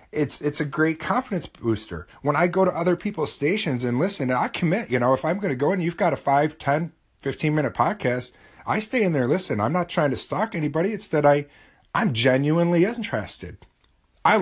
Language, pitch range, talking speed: English, 115-170 Hz, 215 wpm